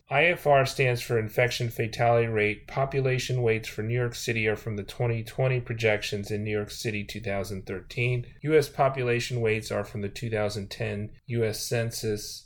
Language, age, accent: English, 30-49, American